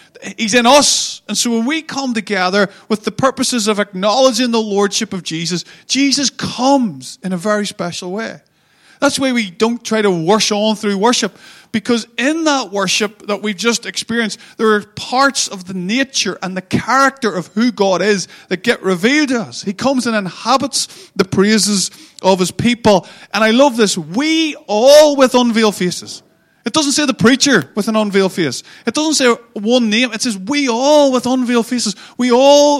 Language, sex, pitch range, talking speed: English, male, 195-245 Hz, 185 wpm